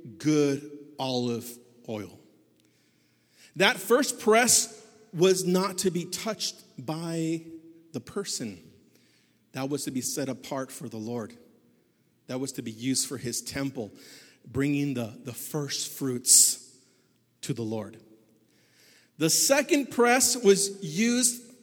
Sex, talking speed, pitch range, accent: male, 120 wpm, 130-190 Hz, American